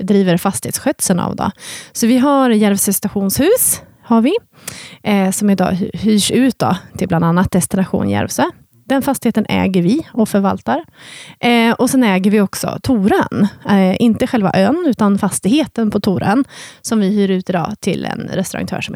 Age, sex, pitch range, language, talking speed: 30-49, female, 195-255 Hz, Swedish, 160 wpm